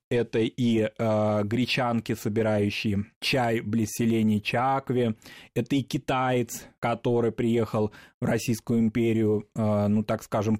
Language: Russian